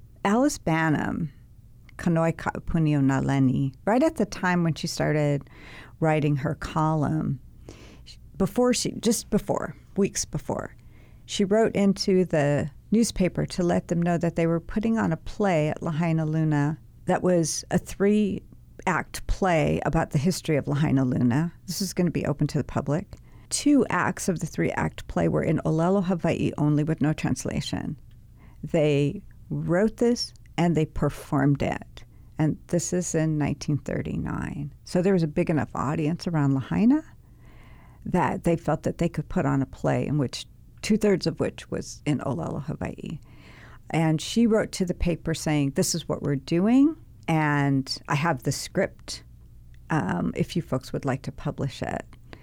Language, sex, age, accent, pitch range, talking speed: English, female, 50-69, American, 140-180 Hz, 165 wpm